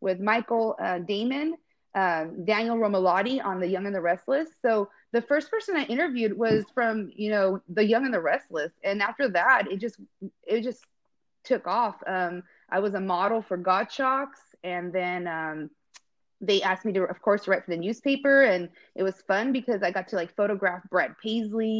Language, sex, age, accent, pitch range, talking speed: English, female, 30-49, American, 190-235 Hz, 195 wpm